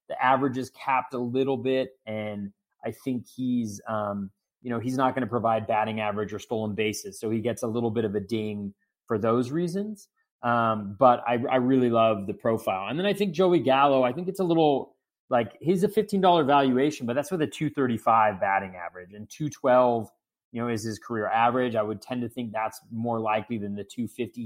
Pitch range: 105-130 Hz